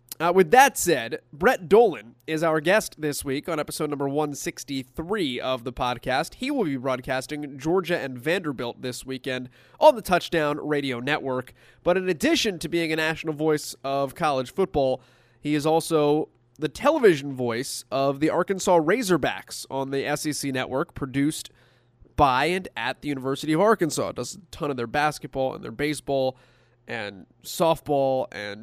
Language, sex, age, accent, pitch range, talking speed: English, male, 20-39, American, 125-160 Hz, 160 wpm